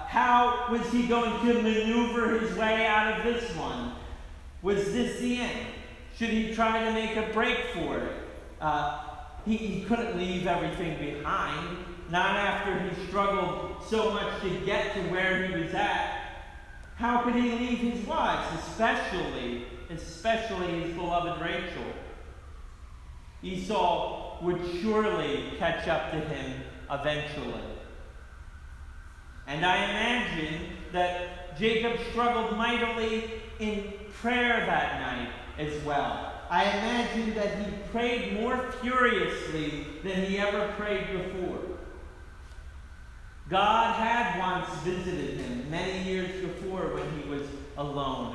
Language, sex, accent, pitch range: English, male, American, 160-225 Hz